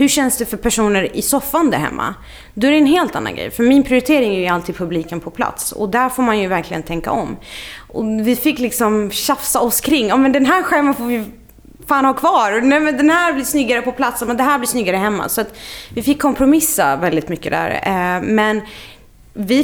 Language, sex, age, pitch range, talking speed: Swedish, female, 30-49, 180-255 Hz, 225 wpm